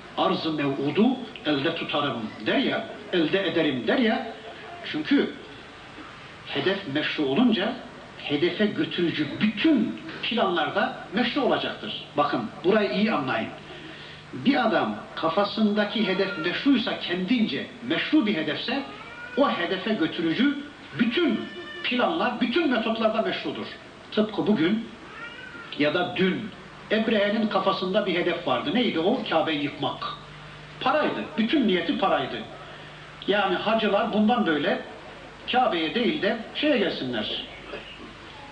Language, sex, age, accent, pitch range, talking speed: Turkish, male, 60-79, native, 185-245 Hz, 105 wpm